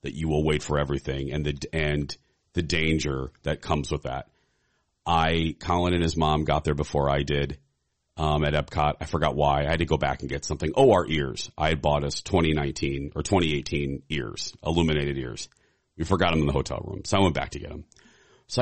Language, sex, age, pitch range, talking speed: English, male, 40-59, 75-90 Hz, 215 wpm